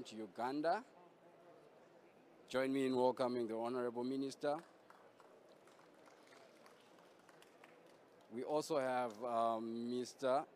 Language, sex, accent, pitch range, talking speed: English, male, South African, 115-130 Hz, 80 wpm